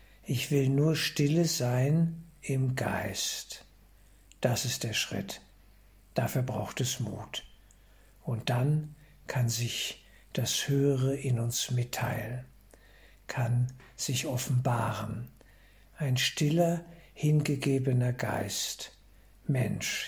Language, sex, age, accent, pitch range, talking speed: German, male, 60-79, German, 115-140 Hz, 95 wpm